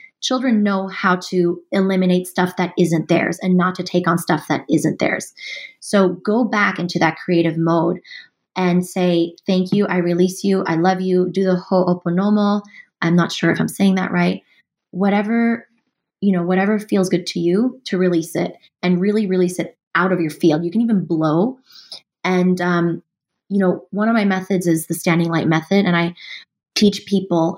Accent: American